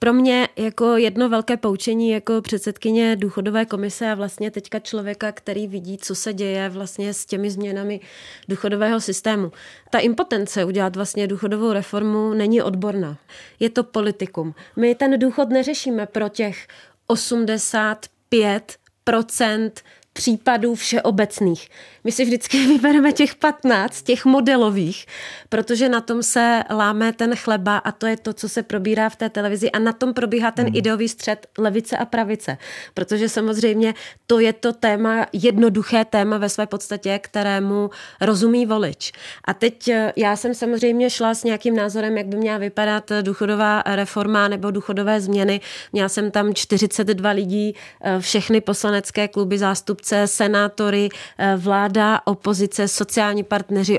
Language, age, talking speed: Czech, 30-49, 140 wpm